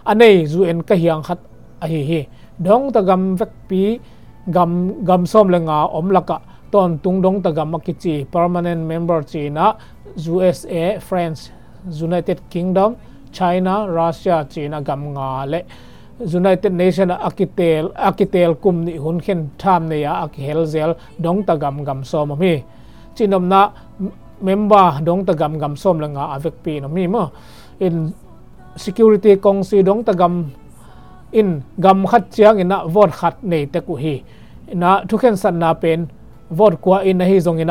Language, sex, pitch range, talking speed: English, male, 160-195 Hz, 130 wpm